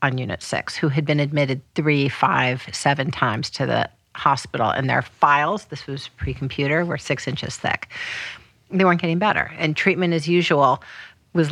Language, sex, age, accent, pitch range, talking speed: English, female, 50-69, American, 135-165 Hz, 170 wpm